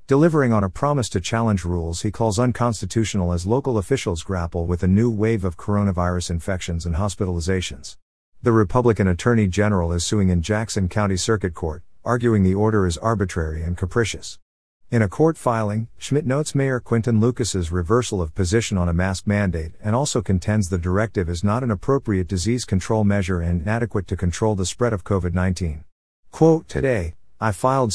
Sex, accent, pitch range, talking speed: male, American, 90-115 Hz, 175 wpm